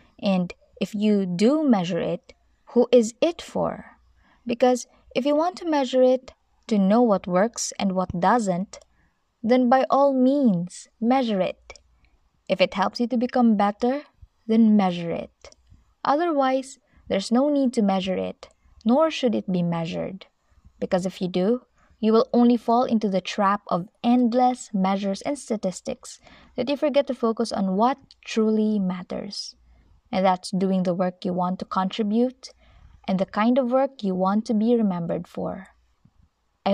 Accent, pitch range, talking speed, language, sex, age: Filipino, 185-255 Hz, 160 wpm, English, female, 20-39